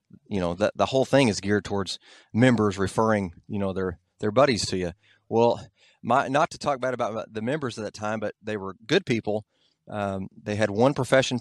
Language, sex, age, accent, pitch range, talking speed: English, male, 30-49, American, 100-130 Hz, 210 wpm